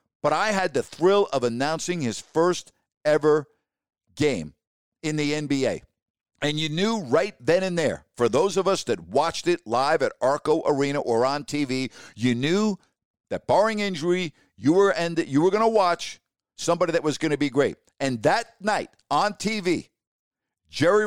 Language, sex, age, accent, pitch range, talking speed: English, male, 50-69, American, 145-190 Hz, 170 wpm